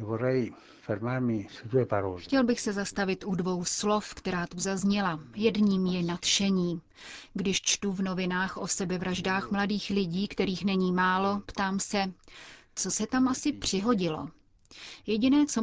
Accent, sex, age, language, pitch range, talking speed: native, female, 30-49, Czech, 170-205 Hz, 125 wpm